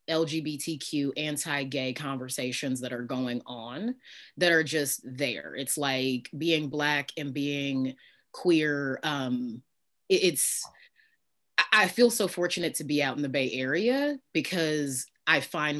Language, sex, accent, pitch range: English, female, American, 135-165 Hz